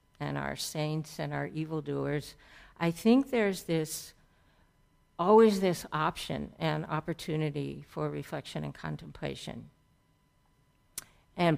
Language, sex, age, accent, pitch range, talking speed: English, female, 60-79, American, 150-195 Hz, 105 wpm